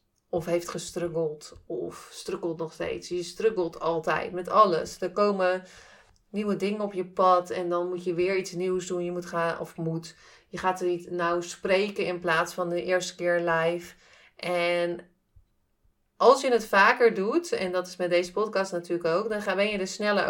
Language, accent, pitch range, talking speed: Dutch, Dutch, 175-200 Hz, 190 wpm